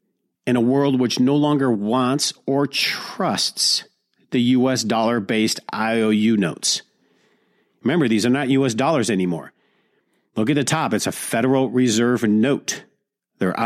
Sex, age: male, 50-69